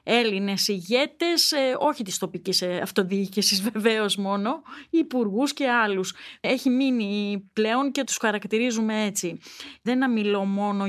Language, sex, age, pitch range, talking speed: Greek, female, 30-49, 195-265 Hz, 120 wpm